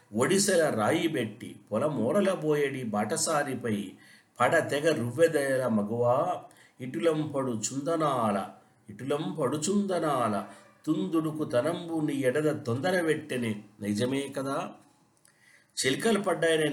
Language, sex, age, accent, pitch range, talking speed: Telugu, male, 60-79, native, 110-155 Hz, 85 wpm